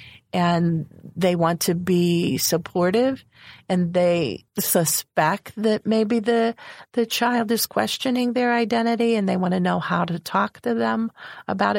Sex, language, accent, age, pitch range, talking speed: female, English, American, 50-69, 160-210 Hz, 150 wpm